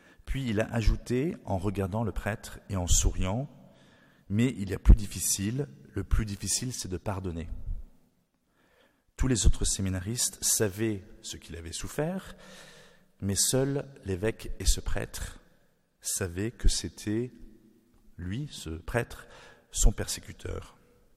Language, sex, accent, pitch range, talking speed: French, male, French, 95-120 Hz, 130 wpm